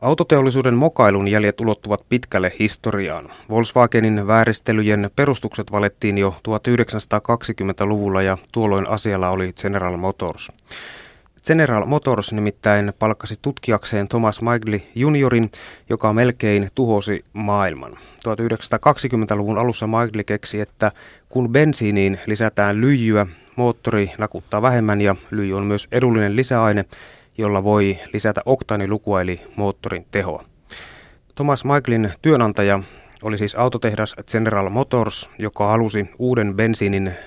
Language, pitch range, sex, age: Finnish, 100-120 Hz, male, 30-49